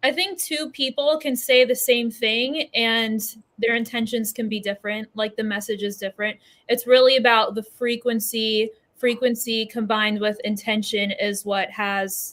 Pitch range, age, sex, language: 210-245 Hz, 20-39, female, English